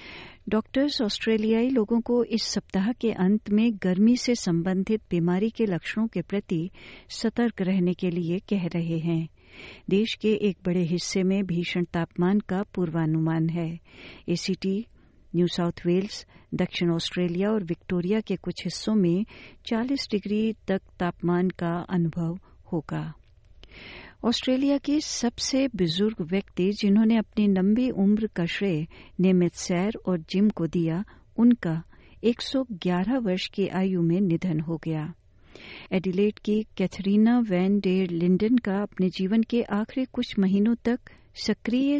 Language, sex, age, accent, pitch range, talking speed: Hindi, female, 60-79, native, 175-215 Hz, 135 wpm